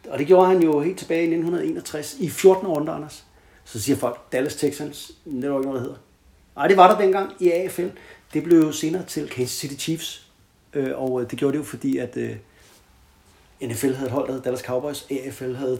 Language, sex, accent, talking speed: Danish, male, native, 205 wpm